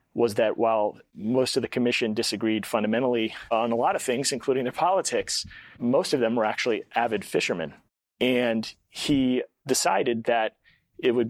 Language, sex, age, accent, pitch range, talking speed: English, male, 30-49, American, 110-120 Hz, 160 wpm